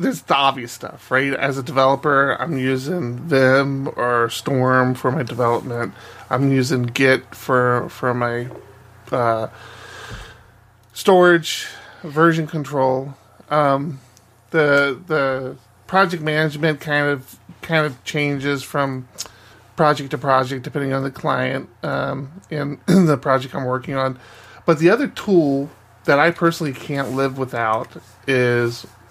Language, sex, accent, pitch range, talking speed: English, male, American, 120-150 Hz, 130 wpm